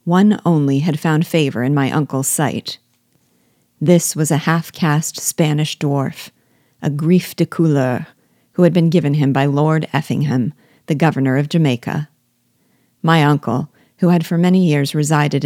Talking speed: 155 wpm